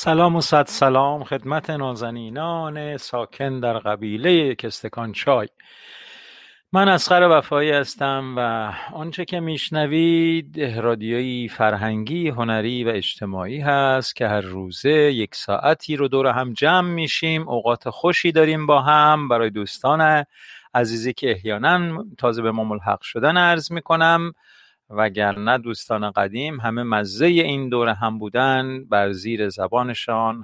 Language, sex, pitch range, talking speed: Persian, male, 115-150 Hz, 125 wpm